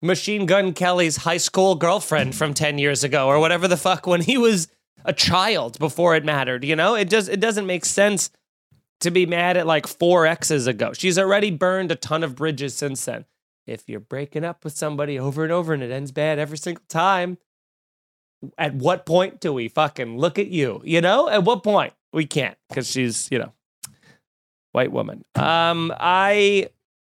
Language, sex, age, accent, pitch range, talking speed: English, male, 20-39, American, 140-185 Hz, 190 wpm